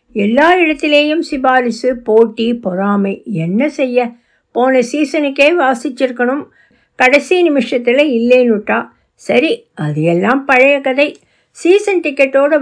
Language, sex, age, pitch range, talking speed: Tamil, female, 60-79, 220-280 Hz, 95 wpm